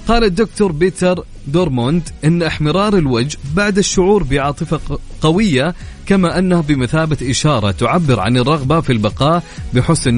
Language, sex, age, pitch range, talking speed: Arabic, male, 30-49, 115-155 Hz, 125 wpm